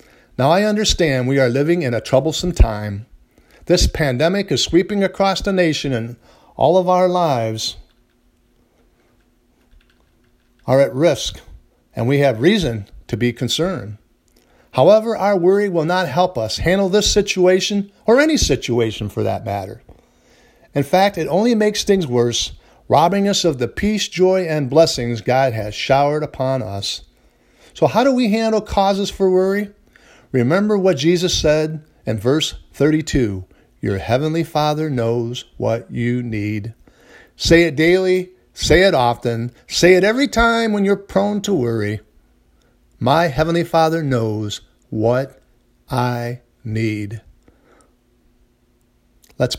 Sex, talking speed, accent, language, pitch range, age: male, 135 wpm, American, English, 120-185 Hz, 50-69